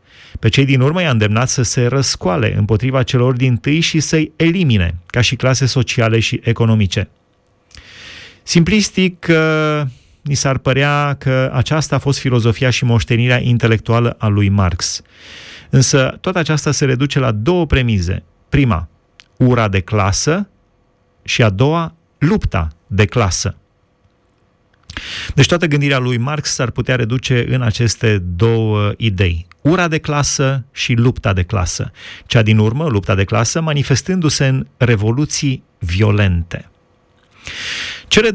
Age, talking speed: 30-49, 135 wpm